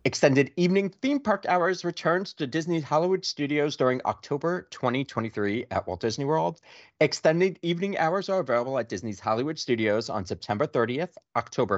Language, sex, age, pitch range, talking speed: English, male, 30-49, 125-180 Hz, 155 wpm